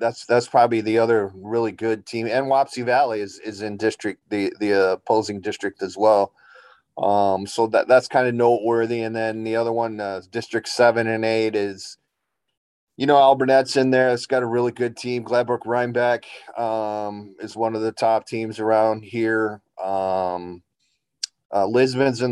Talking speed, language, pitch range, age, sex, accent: 175 wpm, English, 100-115 Hz, 30-49, male, American